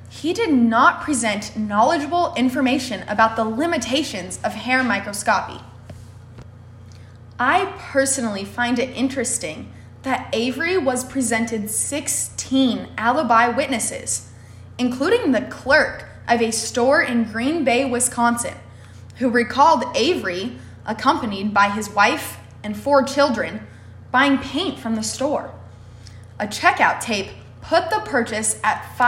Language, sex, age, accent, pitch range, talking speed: English, female, 20-39, American, 215-280 Hz, 115 wpm